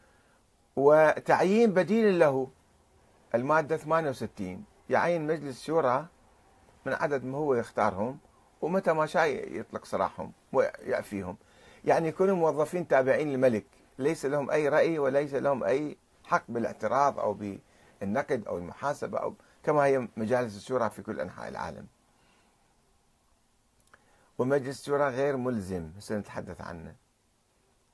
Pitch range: 115-170 Hz